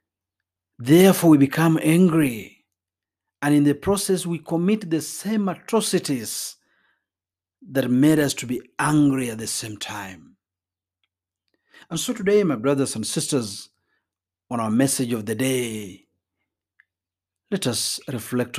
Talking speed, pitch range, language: 125 wpm, 110-165 Hz, Swahili